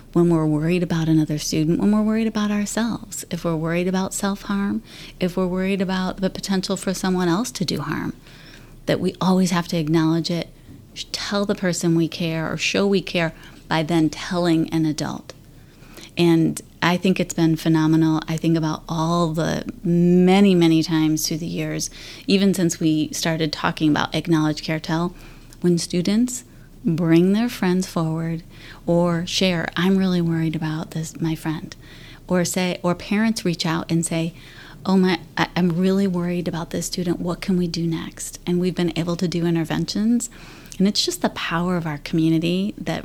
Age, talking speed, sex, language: 30-49, 175 wpm, female, English